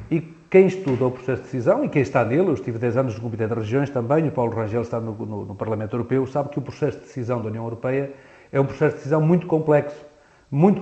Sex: male